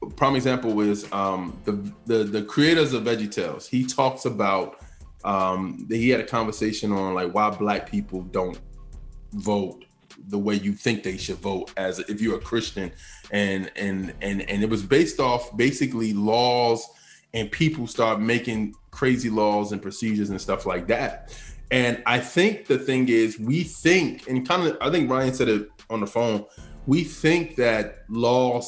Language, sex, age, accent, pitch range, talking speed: English, male, 20-39, American, 105-130 Hz, 175 wpm